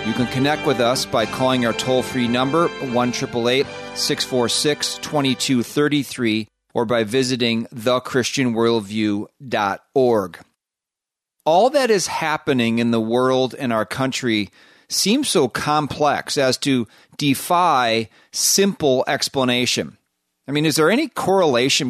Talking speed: 105 wpm